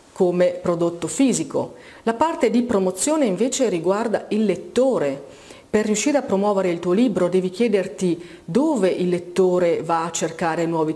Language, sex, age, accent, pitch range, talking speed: Italian, female, 40-59, native, 170-230 Hz, 150 wpm